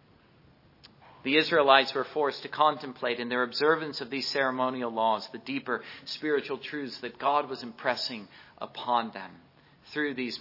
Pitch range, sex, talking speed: 125-150 Hz, male, 145 wpm